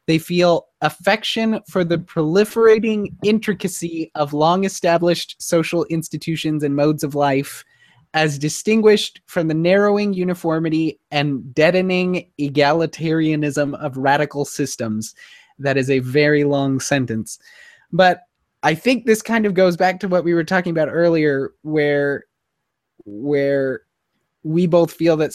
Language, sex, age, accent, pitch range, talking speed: English, male, 20-39, American, 140-180 Hz, 130 wpm